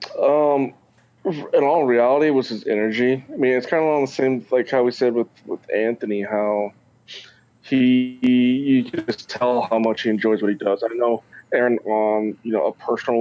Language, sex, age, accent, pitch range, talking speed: English, male, 20-39, American, 110-130 Hz, 195 wpm